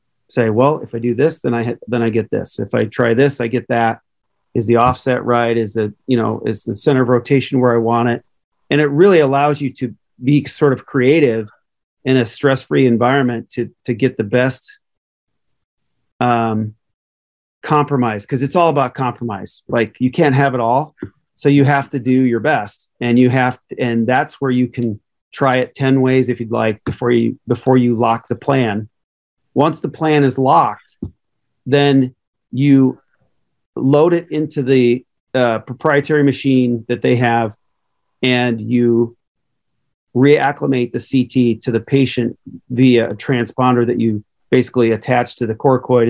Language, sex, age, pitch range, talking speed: English, male, 40-59, 115-135 Hz, 175 wpm